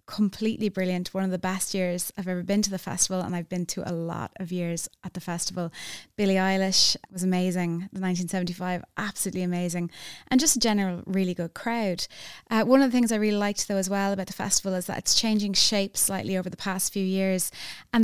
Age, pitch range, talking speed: 20-39, 185-210 Hz, 215 wpm